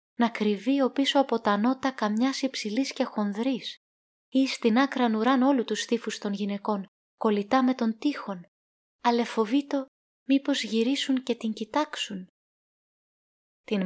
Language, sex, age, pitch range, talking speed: Greek, female, 20-39, 200-250 Hz, 145 wpm